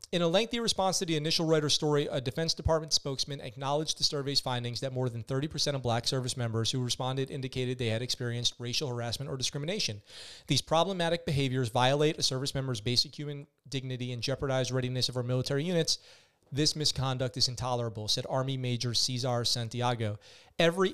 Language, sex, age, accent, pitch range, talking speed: English, male, 30-49, American, 125-145 Hz, 180 wpm